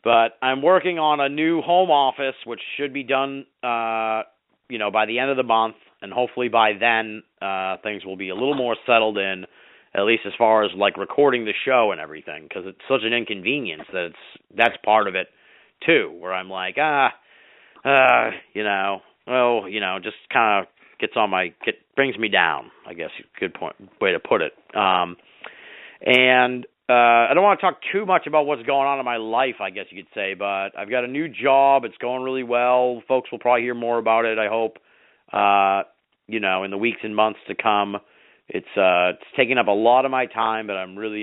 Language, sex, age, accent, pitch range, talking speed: English, male, 40-59, American, 100-130 Hz, 215 wpm